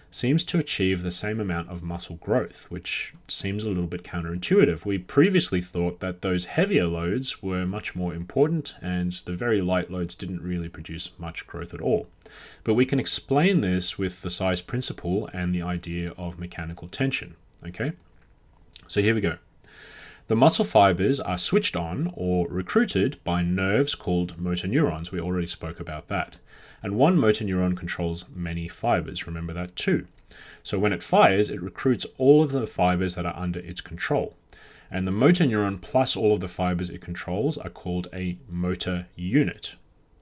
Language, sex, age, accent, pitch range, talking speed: English, male, 30-49, Australian, 90-110 Hz, 175 wpm